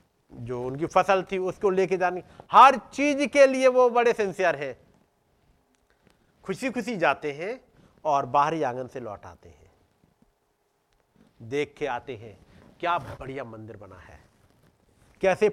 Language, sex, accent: Hindi, male, native